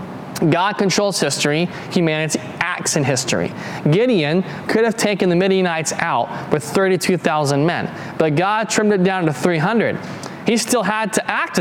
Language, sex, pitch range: English, male, 150-195 Hz